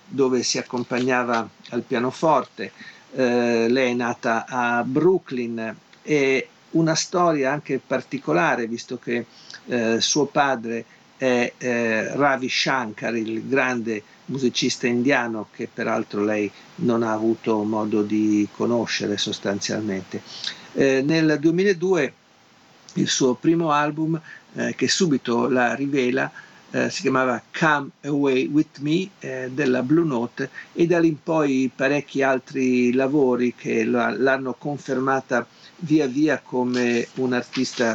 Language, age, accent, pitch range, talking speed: Italian, 50-69, native, 115-140 Hz, 120 wpm